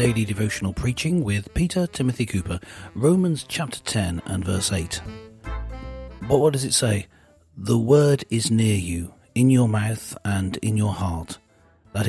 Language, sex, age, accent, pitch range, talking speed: English, male, 40-59, British, 95-125 Hz, 155 wpm